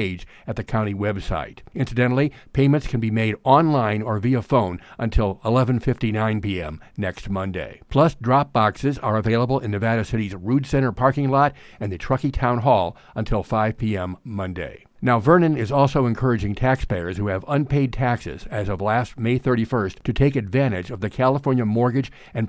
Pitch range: 105-135 Hz